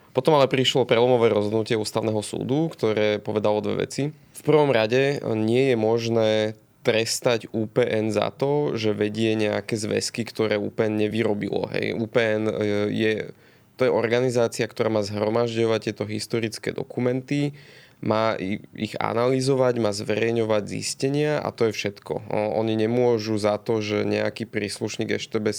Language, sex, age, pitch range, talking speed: Slovak, male, 20-39, 105-125 Hz, 135 wpm